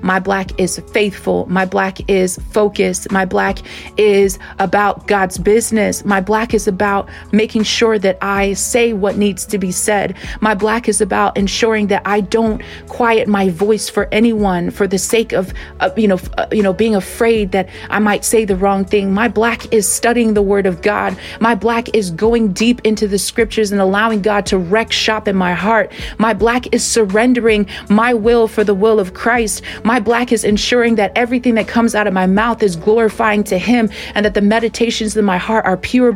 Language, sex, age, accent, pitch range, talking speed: English, female, 30-49, American, 200-230 Hz, 200 wpm